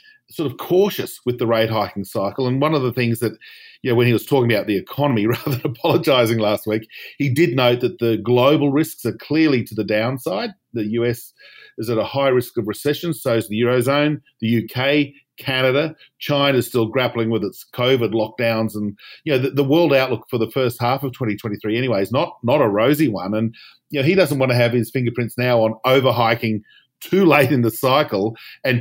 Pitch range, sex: 110-140 Hz, male